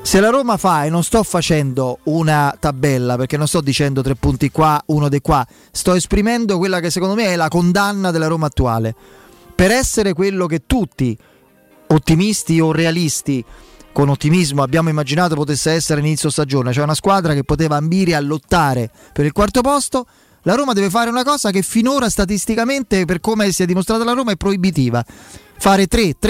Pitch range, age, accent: 145-190 Hz, 30-49, native